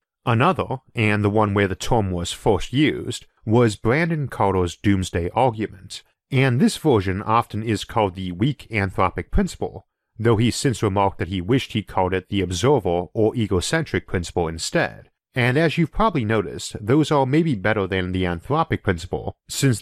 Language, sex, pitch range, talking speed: English, male, 95-120 Hz, 165 wpm